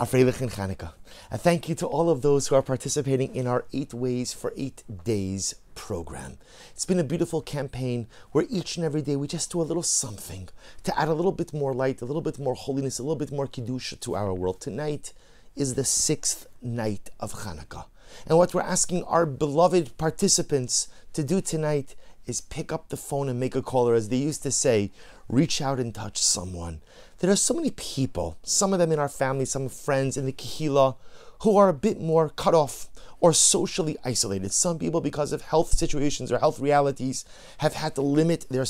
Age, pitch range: 30-49, 120-160 Hz